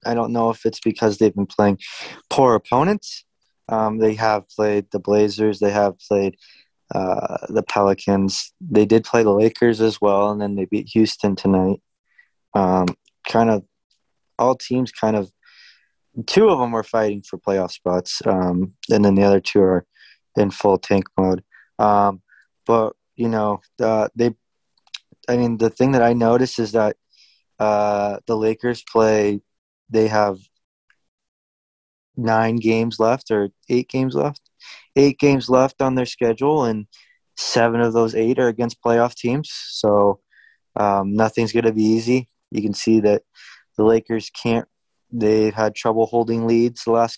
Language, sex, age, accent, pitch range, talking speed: English, male, 20-39, American, 100-115 Hz, 160 wpm